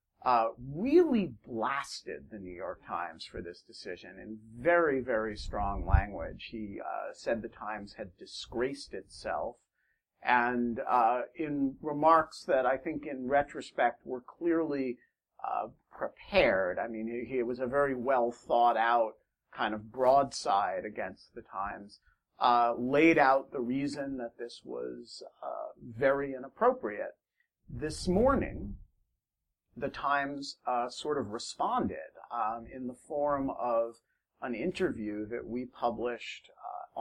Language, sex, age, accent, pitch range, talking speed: English, male, 50-69, American, 115-140 Hz, 135 wpm